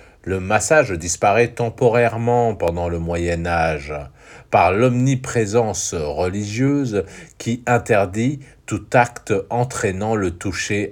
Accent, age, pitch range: French, 50-69, 85-125 Hz